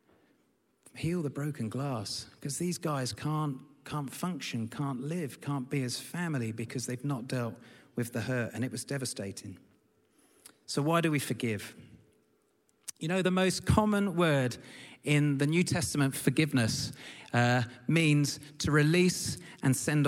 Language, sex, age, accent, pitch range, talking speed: English, male, 40-59, British, 115-155 Hz, 145 wpm